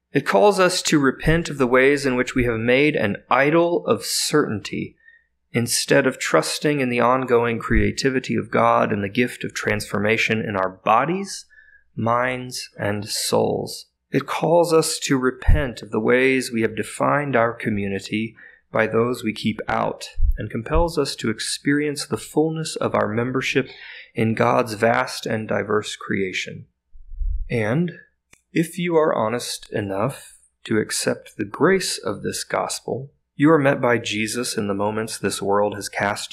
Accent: American